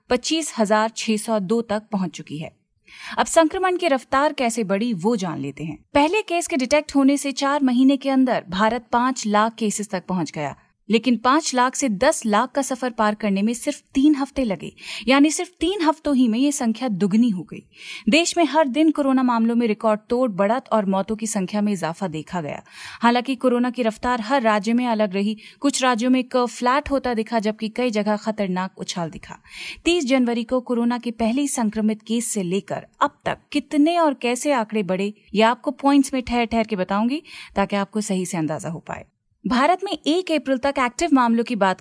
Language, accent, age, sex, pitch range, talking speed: Hindi, native, 30-49, female, 215-280 Hz, 200 wpm